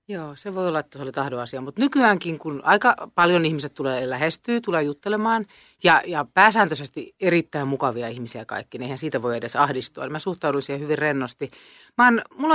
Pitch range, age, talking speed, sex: 140-205 Hz, 30-49, 190 wpm, female